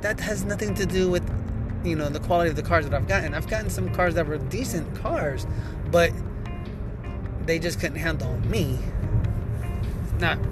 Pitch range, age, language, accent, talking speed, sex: 100-120 Hz, 20-39, English, American, 175 wpm, male